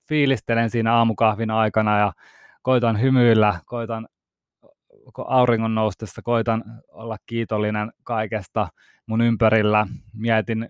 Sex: male